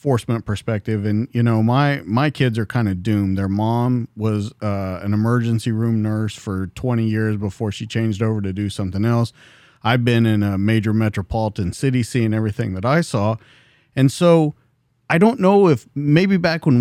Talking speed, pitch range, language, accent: 185 wpm, 110-155 Hz, English, American